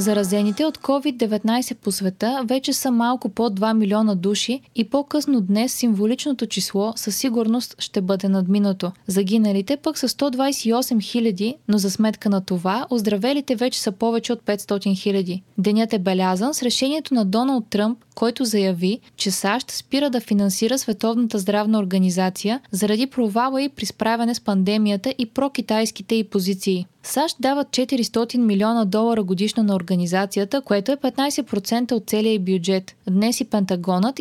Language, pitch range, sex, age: Bulgarian, 200-245 Hz, female, 20-39